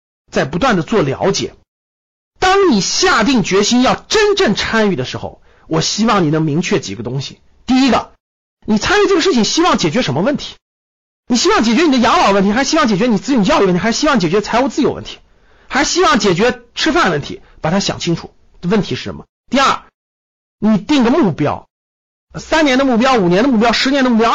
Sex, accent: male, native